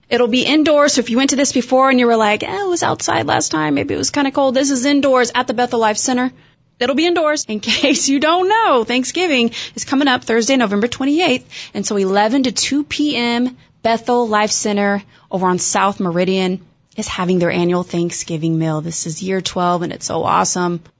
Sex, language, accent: female, English, American